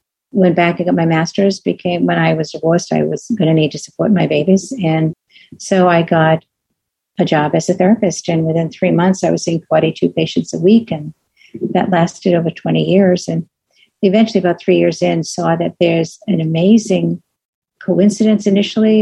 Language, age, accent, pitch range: English, 50-69, American, 165-195 Hz